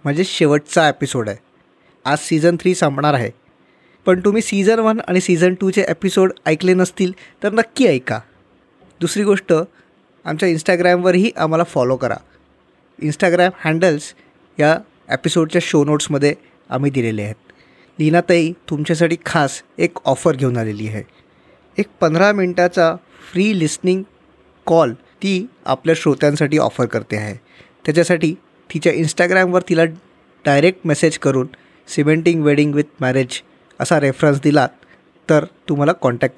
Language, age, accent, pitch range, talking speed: Marathi, 20-39, native, 140-185 Hz, 130 wpm